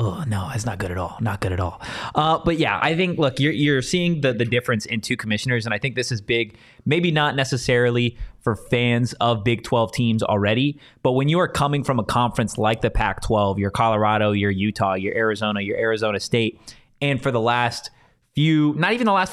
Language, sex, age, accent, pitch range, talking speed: English, male, 20-39, American, 115-145 Hz, 220 wpm